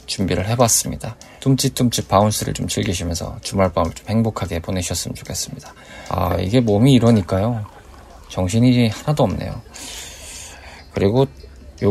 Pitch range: 95-125 Hz